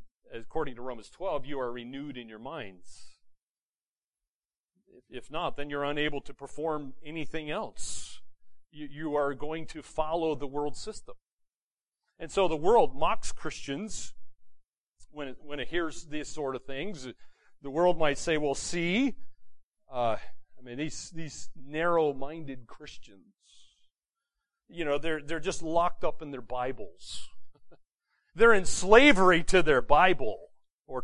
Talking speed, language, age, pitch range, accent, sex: 135 wpm, English, 40-59, 135-170 Hz, American, male